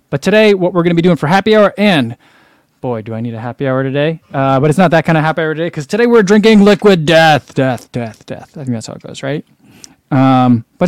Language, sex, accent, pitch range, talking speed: English, male, American, 125-175 Hz, 265 wpm